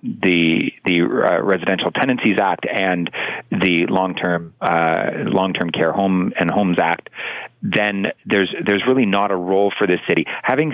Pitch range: 95-115 Hz